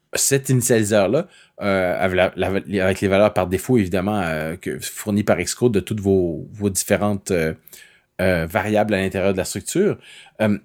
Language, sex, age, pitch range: French, male, 30-49, 95-115 Hz